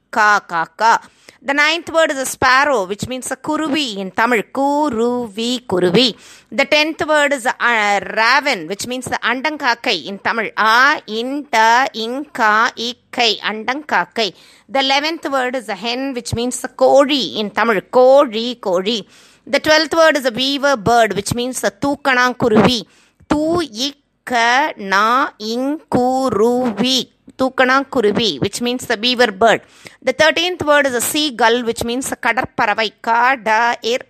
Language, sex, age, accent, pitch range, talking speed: Tamil, female, 20-39, native, 220-275 Hz, 135 wpm